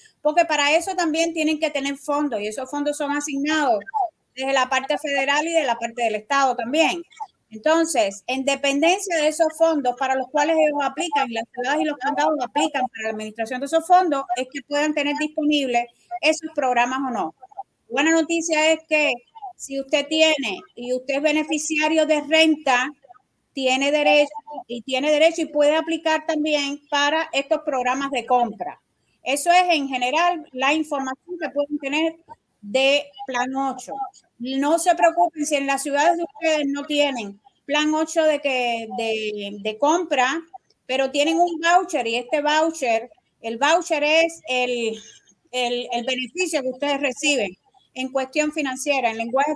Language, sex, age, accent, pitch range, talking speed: Spanish, female, 30-49, American, 255-315 Hz, 165 wpm